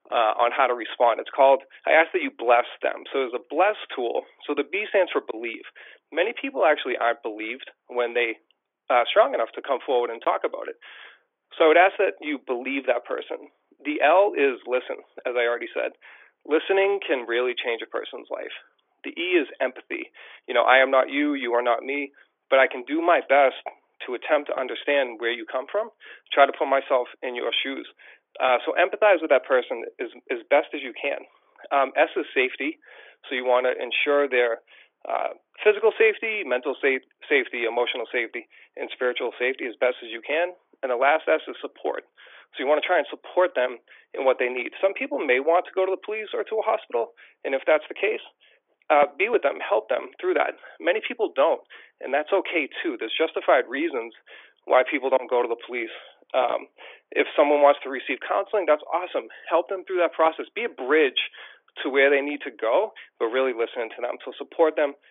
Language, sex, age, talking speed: English, male, 30-49, 210 wpm